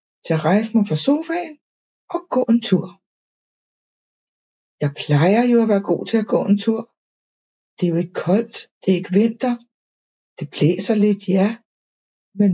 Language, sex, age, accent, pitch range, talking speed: Danish, female, 60-79, native, 185-235 Hz, 165 wpm